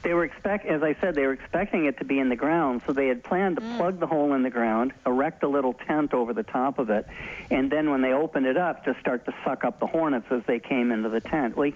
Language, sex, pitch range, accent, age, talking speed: English, male, 120-150 Hz, American, 50-69, 290 wpm